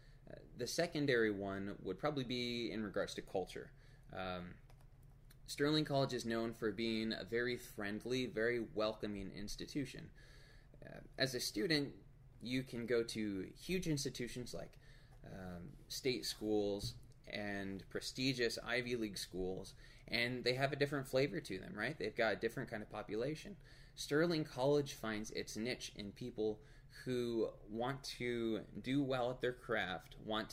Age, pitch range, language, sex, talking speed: 20-39, 110-135 Hz, English, male, 145 wpm